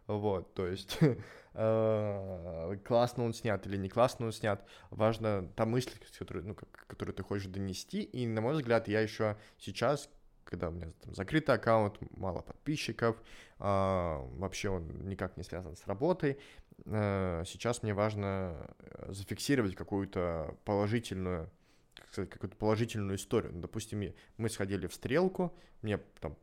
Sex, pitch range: male, 95-120 Hz